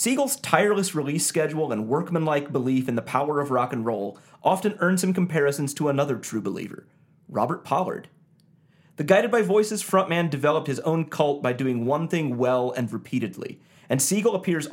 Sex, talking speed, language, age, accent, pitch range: male, 175 wpm, English, 30-49, American, 140-195 Hz